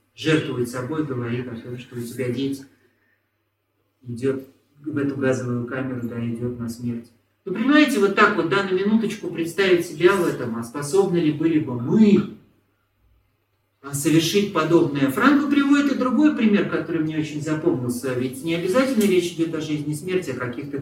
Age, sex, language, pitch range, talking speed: 40-59, male, Russian, 125-175 Hz, 165 wpm